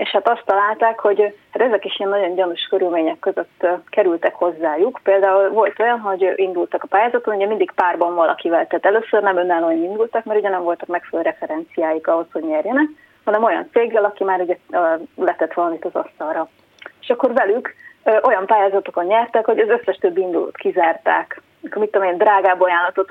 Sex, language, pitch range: female, Hungarian, 175-230 Hz